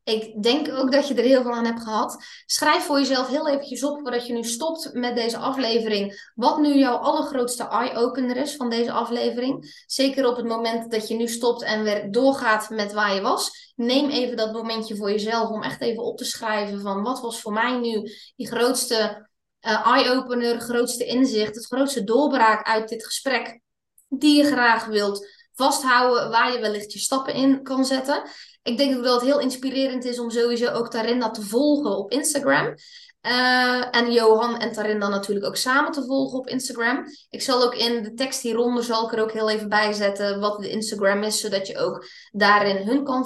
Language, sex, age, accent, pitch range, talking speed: Dutch, female, 20-39, Dutch, 215-260 Hz, 200 wpm